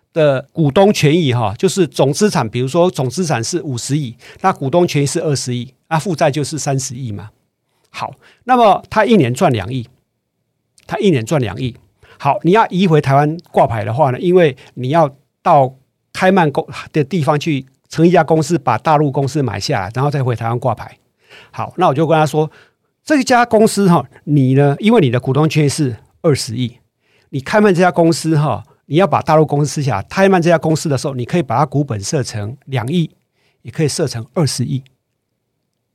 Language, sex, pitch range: Chinese, male, 125-170 Hz